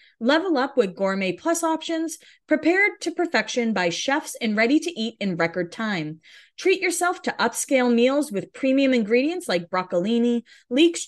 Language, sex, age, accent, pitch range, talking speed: English, female, 20-39, American, 210-310 Hz, 155 wpm